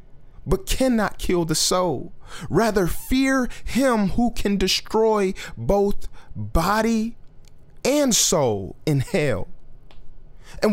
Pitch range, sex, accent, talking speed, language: 160-225 Hz, male, American, 100 wpm, English